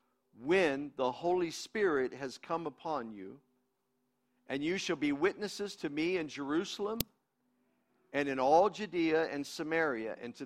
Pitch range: 125-180 Hz